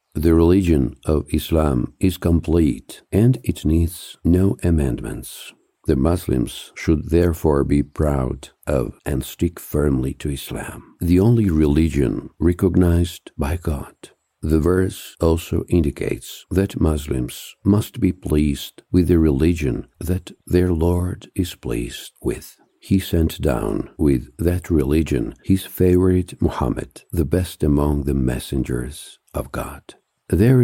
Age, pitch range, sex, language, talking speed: 60-79, 75-95 Hz, male, English, 125 wpm